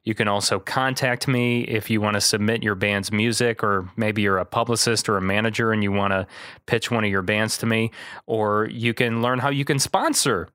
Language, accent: English, American